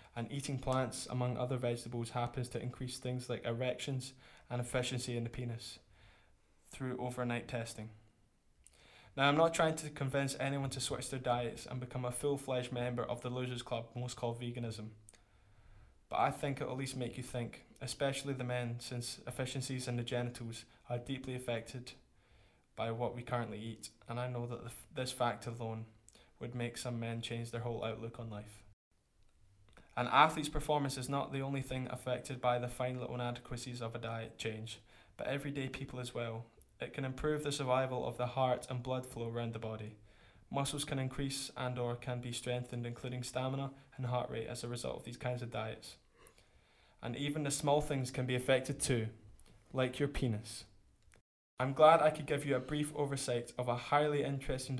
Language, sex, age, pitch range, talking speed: English, male, 10-29, 115-130 Hz, 185 wpm